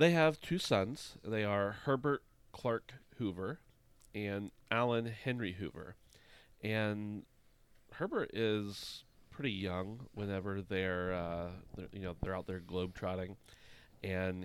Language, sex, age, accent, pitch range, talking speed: English, male, 30-49, American, 95-115 Hz, 125 wpm